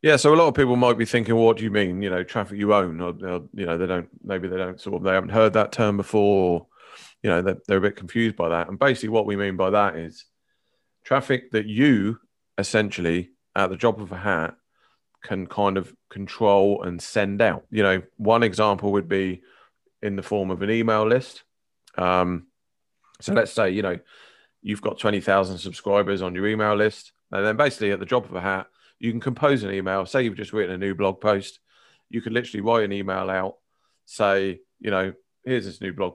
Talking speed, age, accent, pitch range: 220 wpm, 30-49, British, 95-110 Hz